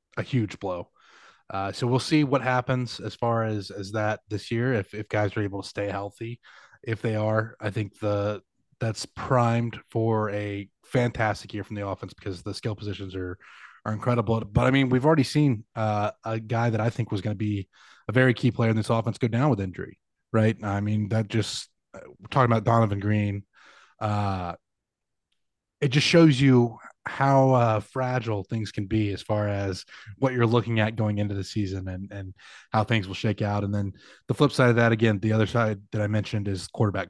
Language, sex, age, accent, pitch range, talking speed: English, male, 20-39, American, 100-120 Hz, 205 wpm